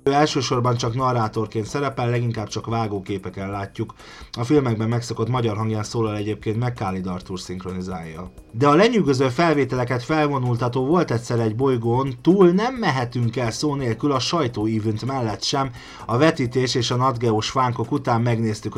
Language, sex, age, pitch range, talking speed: Hungarian, male, 30-49, 110-140 Hz, 145 wpm